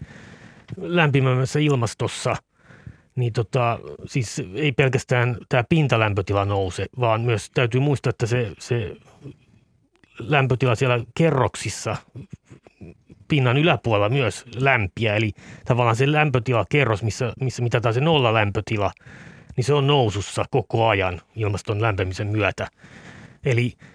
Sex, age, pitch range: male, 30-49, 110-130 Hz